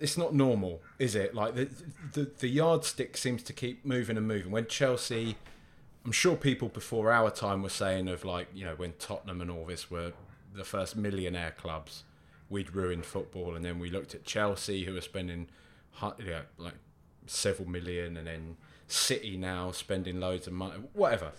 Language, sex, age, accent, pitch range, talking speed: English, male, 20-39, British, 90-115 Hz, 185 wpm